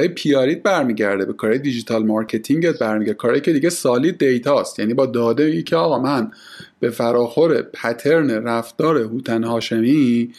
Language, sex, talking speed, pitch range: Persian, male, 150 wpm, 120-170 Hz